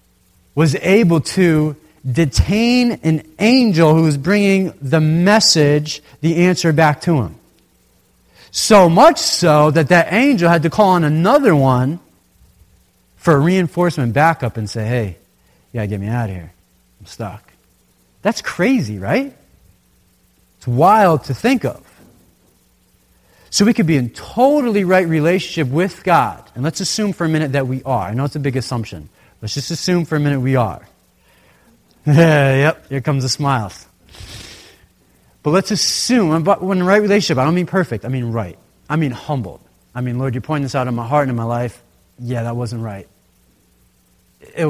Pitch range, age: 110-165 Hz, 30-49